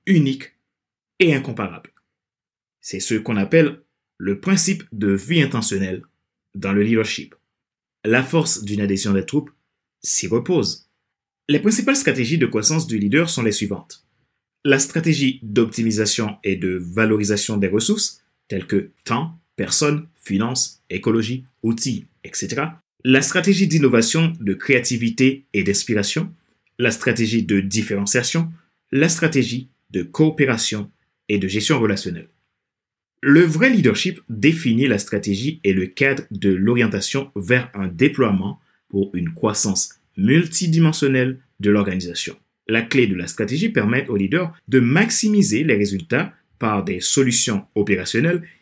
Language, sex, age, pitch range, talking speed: French, male, 30-49, 105-160 Hz, 130 wpm